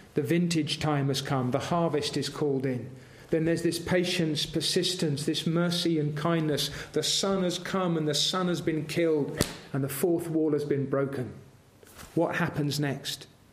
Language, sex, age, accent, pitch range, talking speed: English, male, 40-59, British, 125-170 Hz, 175 wpm